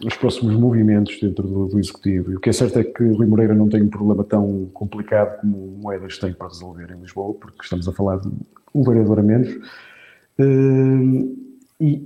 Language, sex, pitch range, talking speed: Portuguese, male, 105-125 Hz, 200 wpm